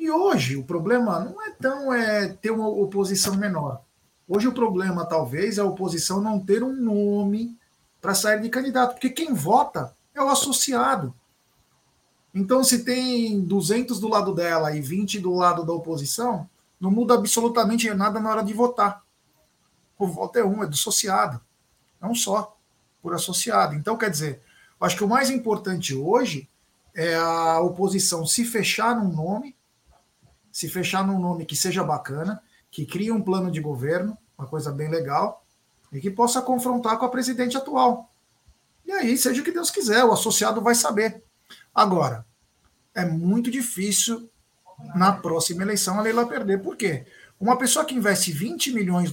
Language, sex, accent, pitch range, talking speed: Portuguese, male, Brazilian, 165-235 Hz, 165 wpm